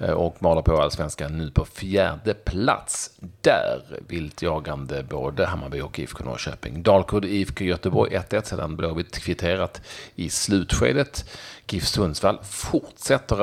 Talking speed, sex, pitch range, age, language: 125 wpm, male, 80-95 Hz, 40-59, Swedish